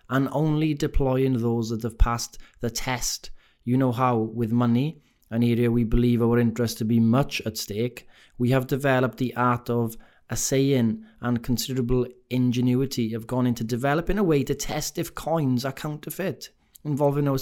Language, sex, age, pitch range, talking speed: English, male, 30-49, 115-140 Hz, 170 wpm